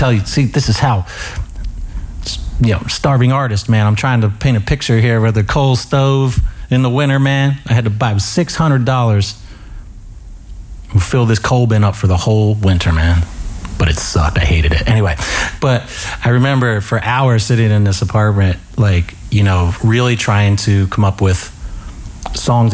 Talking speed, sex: 175 wpm, male